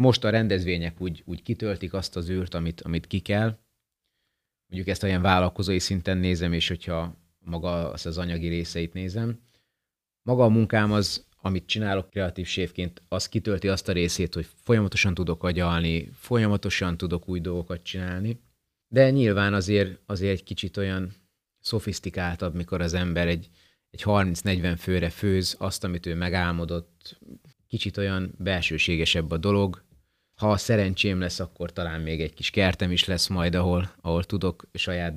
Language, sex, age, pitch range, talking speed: Hungarian, male, 30-49, 85-100 Hz, 155 wpm